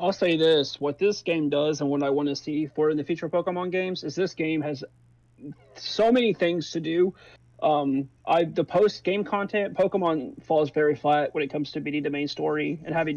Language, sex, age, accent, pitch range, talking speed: English, male, 30-49, American, 145-170 Hz, 210 wpm